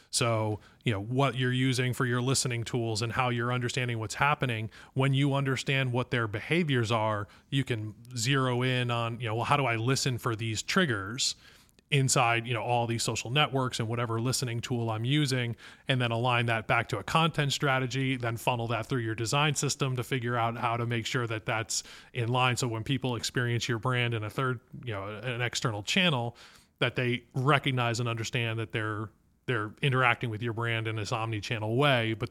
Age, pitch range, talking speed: 30-49, 115-135 Hz, 200 wpm